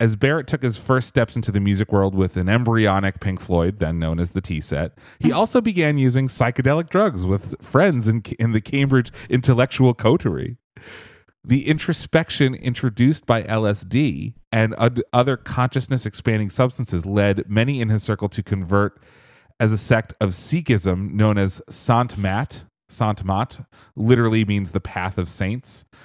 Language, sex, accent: English, male, American